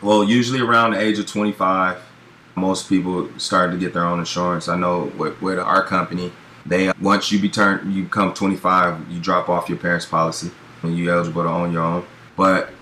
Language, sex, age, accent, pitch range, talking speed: English, male, 20-39, American, 85-100 Hz, 200 wpm